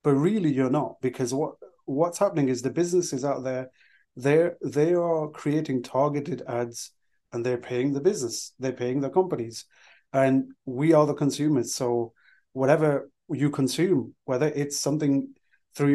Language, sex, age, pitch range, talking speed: English, male, 30-49, 125-145 Hz, 155 wpm